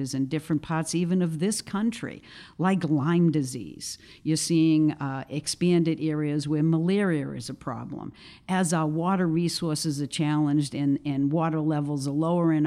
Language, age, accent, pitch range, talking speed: English, 50-69, American, 150-185 Hz, 155 wpm